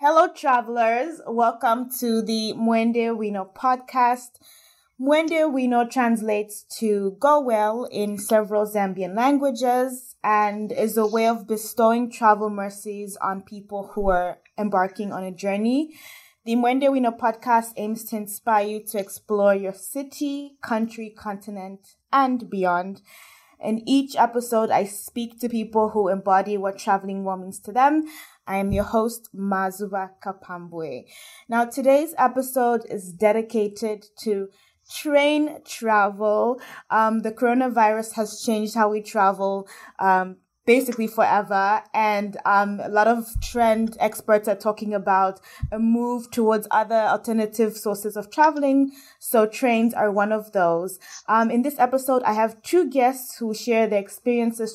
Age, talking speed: 20-39, 135 wpm